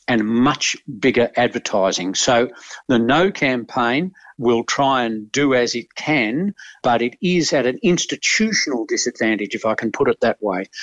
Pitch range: 110-130 Hz